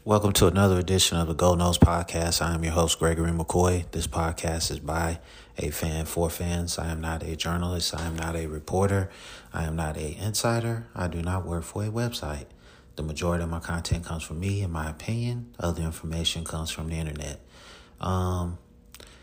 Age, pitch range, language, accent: 30-49, 80-85 Hz, English, American